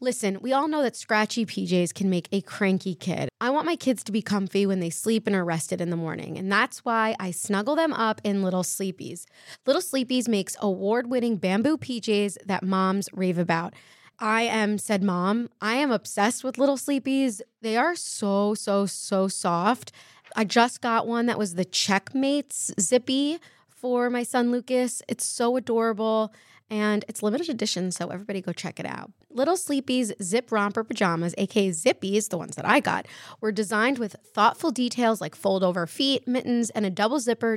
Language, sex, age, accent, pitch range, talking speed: English, female, 20-39, American, 195-245 Hz, 185 wpm